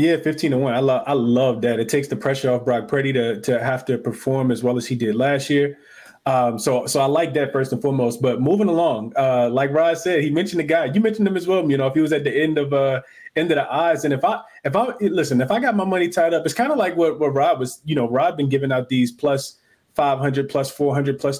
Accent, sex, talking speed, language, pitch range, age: American, male, 290 wpm, English, 135-160 Hz, 20-39